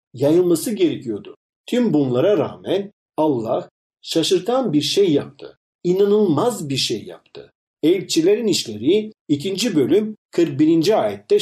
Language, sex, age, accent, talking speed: Turkish, male, 50-69, native, 105 wpm